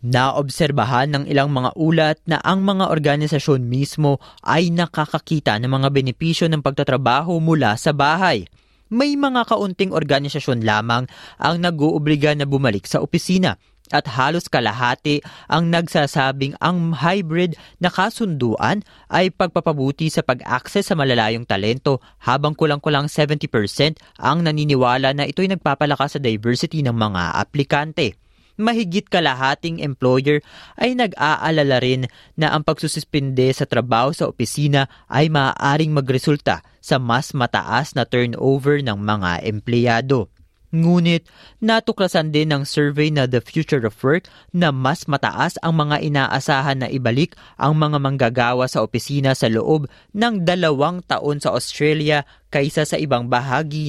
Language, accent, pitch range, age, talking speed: Filipino, native, 125-160 Hz, 20-39, 130 wpm